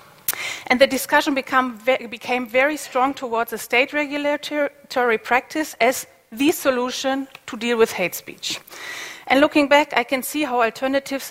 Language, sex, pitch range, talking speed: English, female, 230-270 Hz, 145 wpm